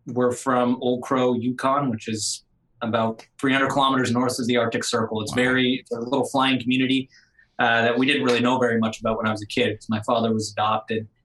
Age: 20-39